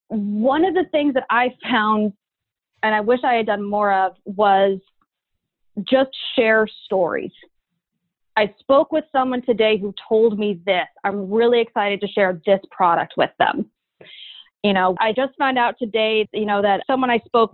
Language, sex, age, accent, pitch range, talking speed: English, female, 30-49, American, 205-260 Hz, 170 wpm